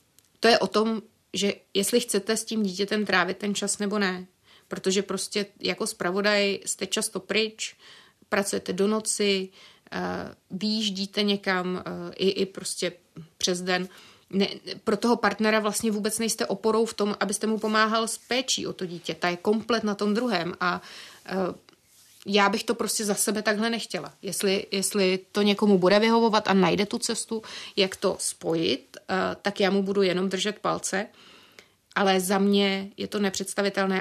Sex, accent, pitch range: female, native, 185-210 Hz